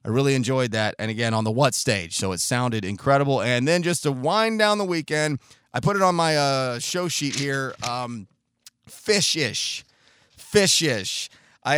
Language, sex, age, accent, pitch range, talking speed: English, male, 30-49, American, 125-155 Hz, 180 wpm